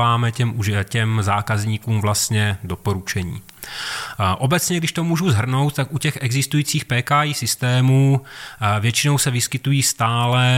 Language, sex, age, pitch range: Czech, male, 30-49, 120-140 Hz